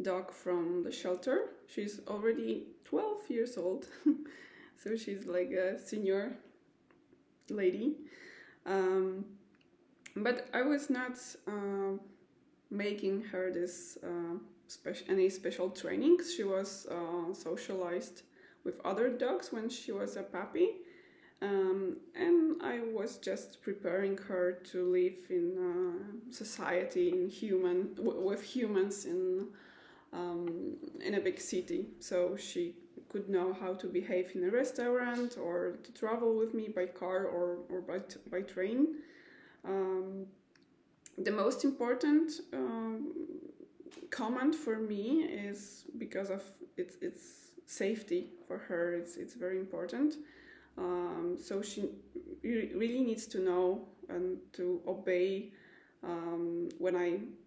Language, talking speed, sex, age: English, 125 wpm, female, 20-39